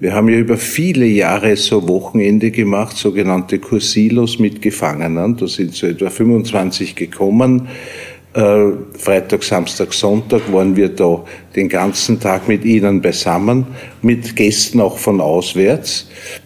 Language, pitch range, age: German, 100-120 Hz, 50-69